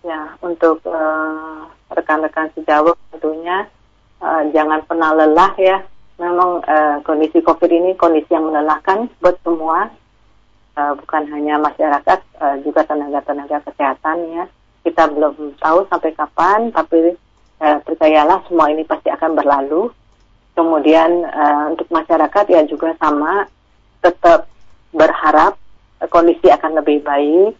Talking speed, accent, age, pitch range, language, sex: 125 wpm, native, 30-49, 150-170 Hz, Indonesian, female